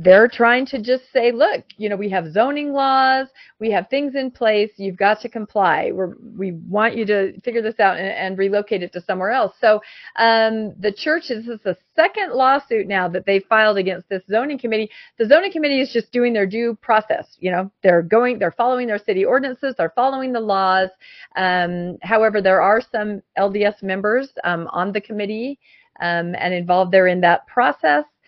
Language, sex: English, female